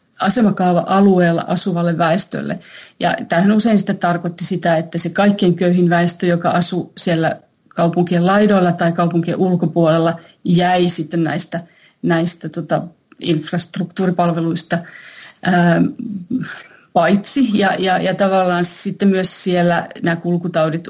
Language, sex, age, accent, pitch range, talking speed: Finnish, female, 40-59, native, 170-190 Hz, 110 wpm